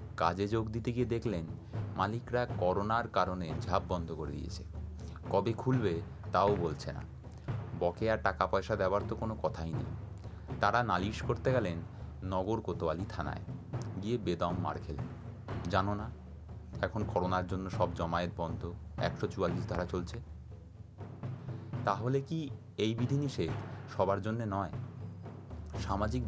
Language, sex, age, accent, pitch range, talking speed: Bengali, male, 30-49, native, 90-115 Hz, 45 wpm